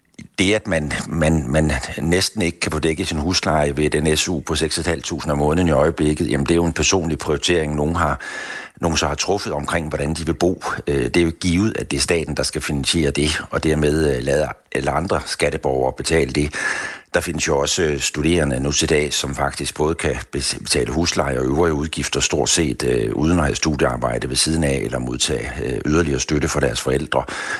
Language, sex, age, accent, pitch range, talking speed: Danish, male, 60-79, native, 70-80 Hz, 200 wpm